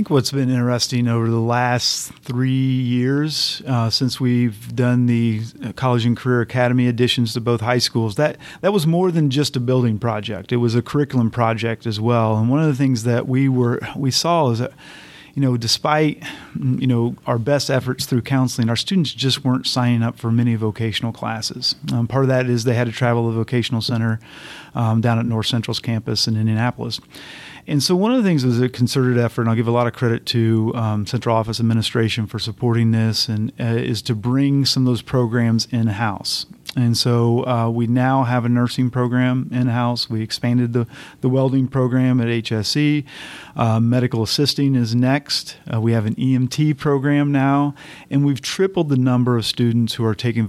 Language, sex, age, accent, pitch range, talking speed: English, male, 40-59, American, 115-130 Hz, 200 wpm